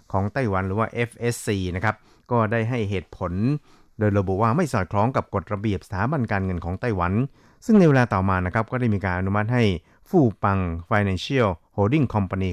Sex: male